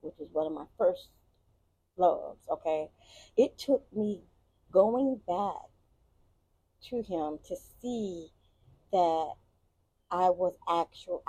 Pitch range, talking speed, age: 145-235 Hz, 110 wpm, 30-49